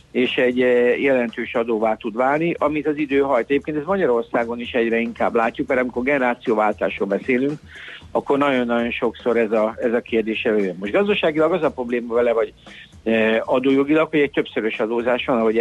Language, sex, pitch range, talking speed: Hungarian, male, 110-140 Hz, 170 wpm